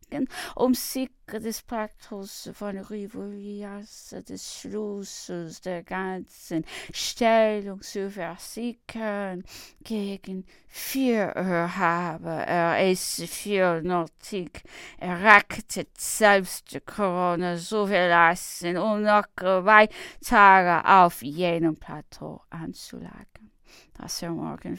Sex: female